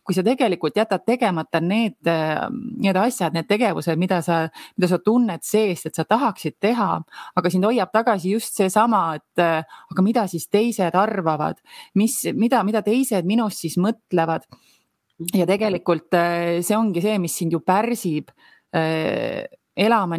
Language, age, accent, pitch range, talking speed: English, 30-49, Finnish, 170-220 Hz, 150 wpm